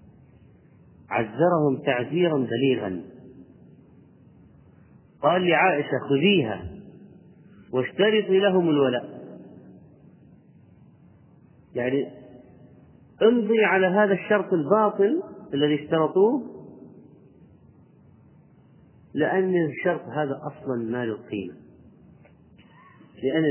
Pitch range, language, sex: 125-175 Hz, Arabic, male